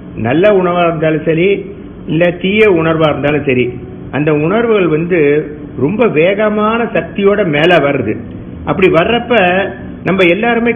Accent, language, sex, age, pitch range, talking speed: native, Tamil, male, 50-69, 140-205 Hz, 115 wpm